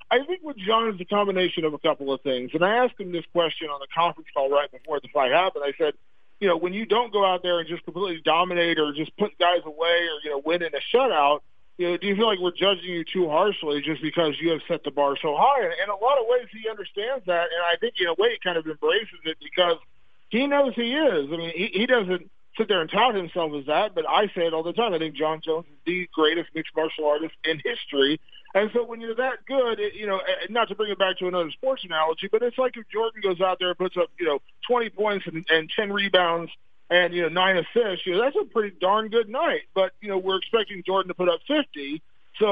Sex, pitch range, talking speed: male, 165-225 Hz, 270 wpm